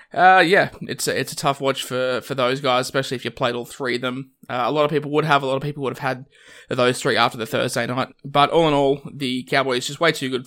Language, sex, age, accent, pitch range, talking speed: English, male, 20-39, Australian, 125-140 Hz, 285 wpm